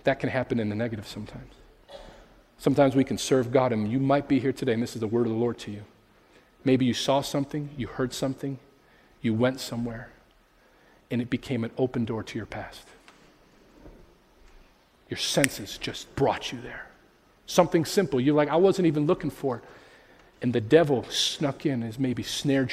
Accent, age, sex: American, 40-59, male